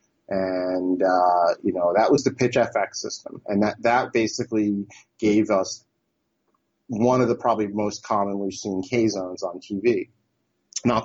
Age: 30-49